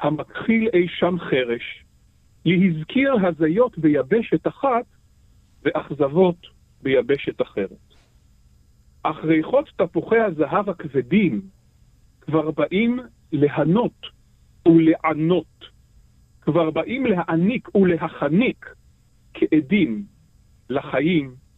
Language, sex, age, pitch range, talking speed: Hebrew, male, 50-69, 150-225 Hz, 70 wpm